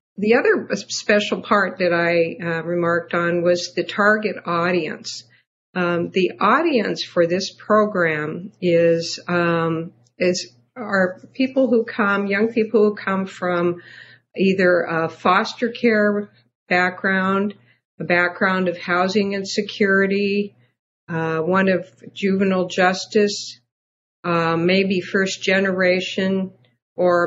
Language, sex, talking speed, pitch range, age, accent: English, female, 110 wpm, 170-200 Hz, 50-69, American